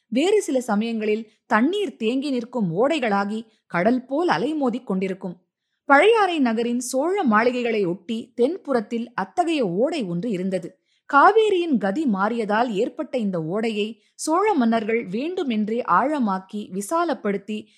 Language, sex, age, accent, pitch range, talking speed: Tamil, female, 20-39, native, 195-265 Hz, 105 wpm